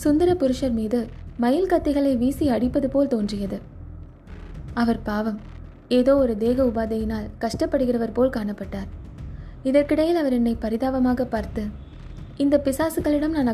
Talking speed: 115 wpm